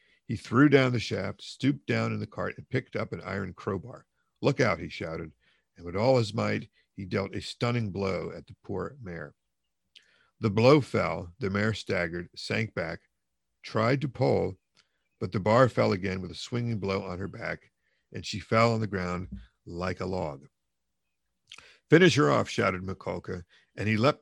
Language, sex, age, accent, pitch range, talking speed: English, male, 50-69, American, 90-115 Hz, 185 wpm